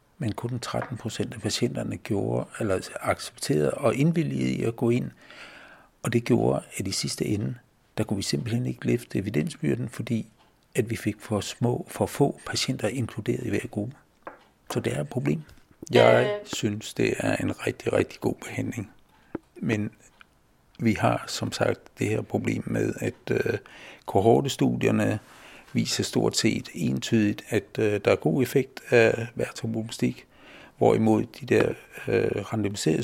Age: 60-79